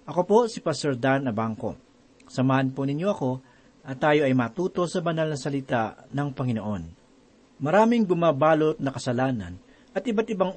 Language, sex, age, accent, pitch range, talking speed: Filipino, male, 40-59, native, 135-180 Hz, 155 wpm